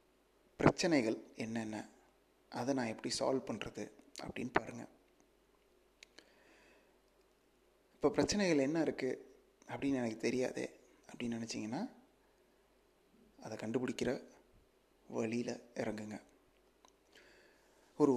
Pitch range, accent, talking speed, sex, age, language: 115-135 Hz, native, 75 wpm, male, 30-49, Tamil